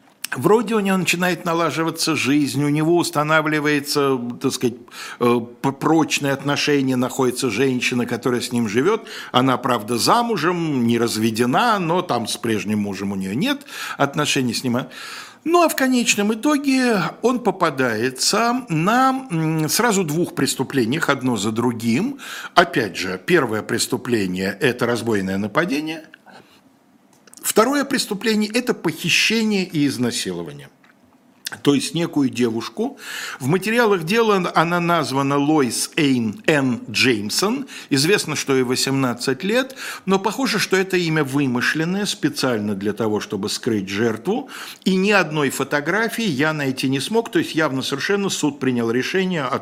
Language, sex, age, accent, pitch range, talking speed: Russian, male, 60-79, native, 120-190 Hz, 130 wpm